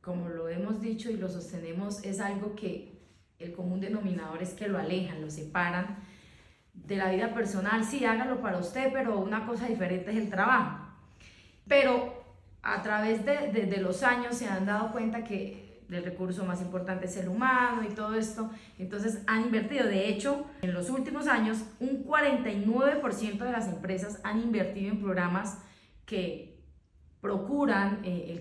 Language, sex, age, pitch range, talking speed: English, female, 30-49, 180-230 Hz, 165 wpm